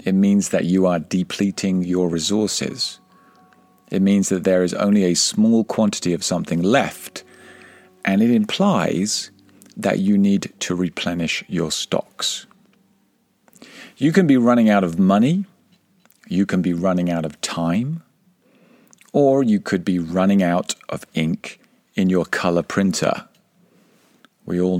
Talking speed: 140 wpm